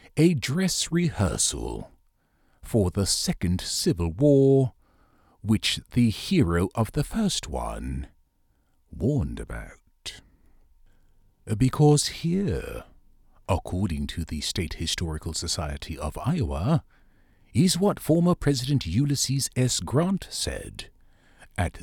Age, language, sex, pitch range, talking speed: 50-69, English, male, 90-150 Hz, 100 wpm